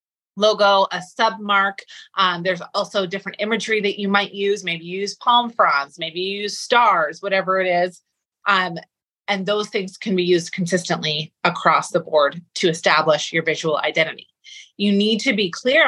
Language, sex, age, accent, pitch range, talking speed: English, female, 30-49, American, 170-210 Hz, 175 wpm